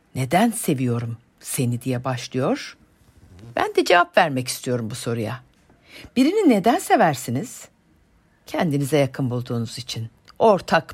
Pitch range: 125-210 Hz